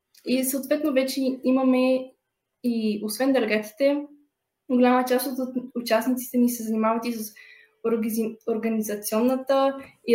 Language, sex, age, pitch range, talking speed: Bulgarian, female, 10-29, 225-265 Hz, 105 wpm